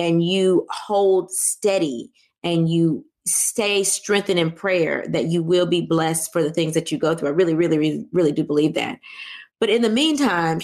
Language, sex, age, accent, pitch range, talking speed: English, female, 30-49, American, 175-235 Hz, 190 wpm